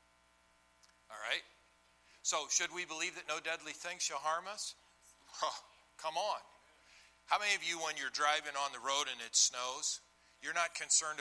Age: 50-69